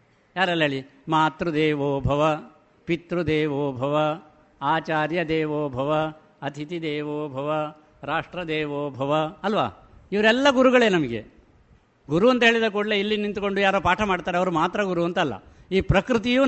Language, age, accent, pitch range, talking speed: Kannada, 60-79, native, 150-205 Hz, 115 wpm